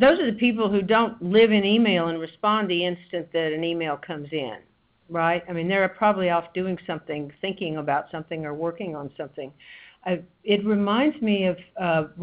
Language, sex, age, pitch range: English, female, 50-69, 150-185 Hz